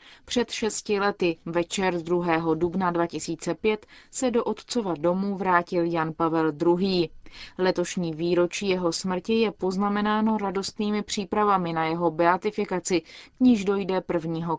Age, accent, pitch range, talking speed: 30-49, native, 170-210 Hz, 120 wpm